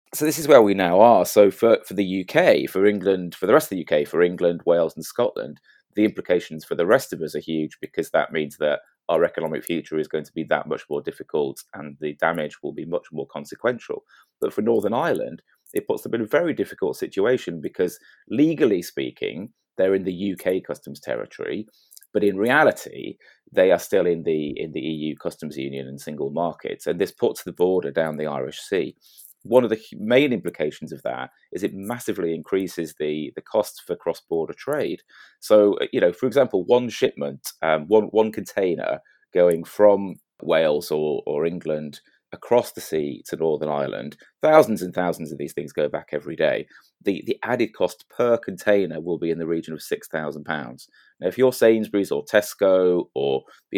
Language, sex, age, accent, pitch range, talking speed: English, male, 30-49, British, 80-110 Hz, 200 wpm